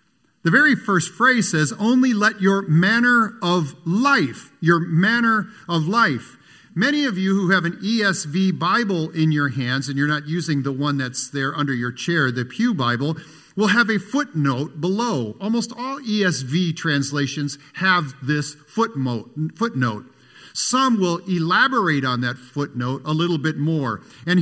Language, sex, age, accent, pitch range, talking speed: English, male, 50-69, American, 135-195 Hz, 155 wpm